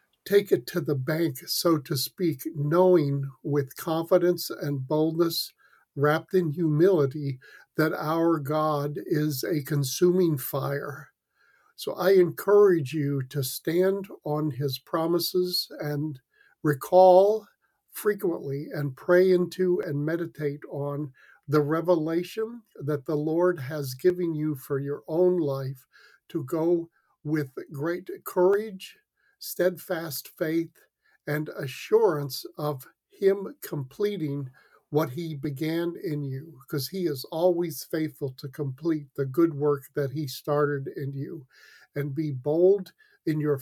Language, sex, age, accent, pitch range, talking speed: English, male, 60-79, American, 145-175 Hz, 125 wpm